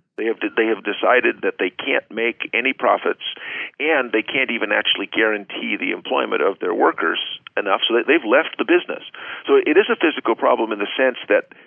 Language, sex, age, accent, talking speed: English, male, 50-69, American, 200 wpm